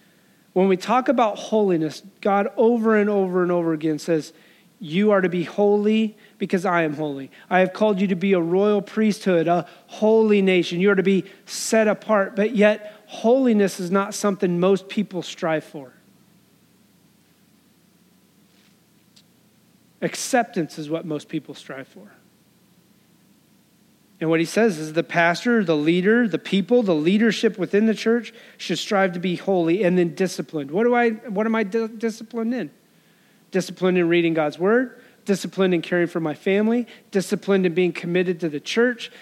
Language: English